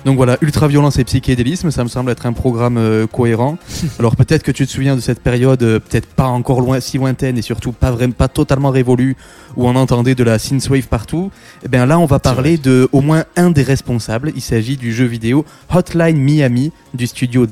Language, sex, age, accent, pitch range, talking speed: French, male, 20-39, French, 115-140 Hz, 215 wpm